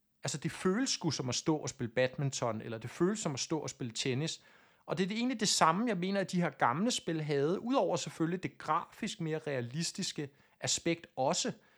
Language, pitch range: Danish, 140-190 Hz